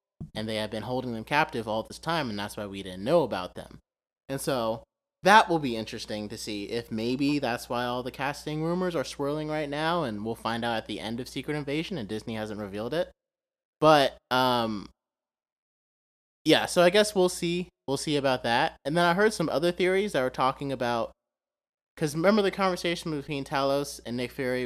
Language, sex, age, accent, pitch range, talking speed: English, male, 30-49, American, 115-160 Hz, 205 wpm